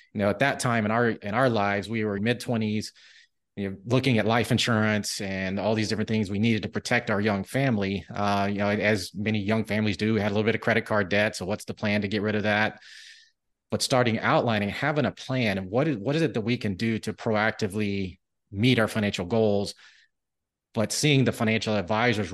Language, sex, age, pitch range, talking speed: English, male, 30-49, 100-120 Hz, 230 wpm